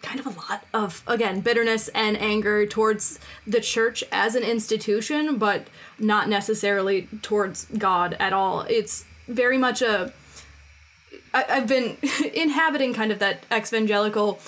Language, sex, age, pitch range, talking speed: English, female, 20-39, 200-240 Hz, 135 wpm